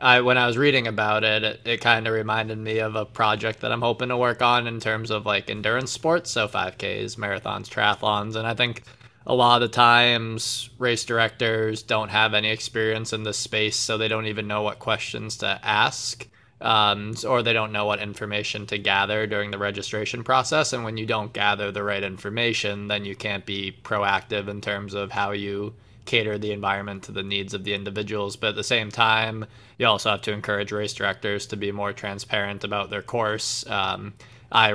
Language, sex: English, male